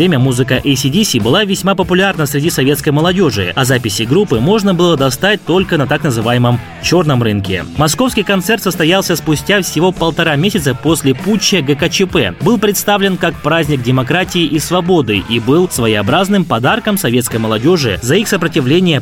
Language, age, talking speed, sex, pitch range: Russian, 20-39, 150 wpm, male, 125-190 Hz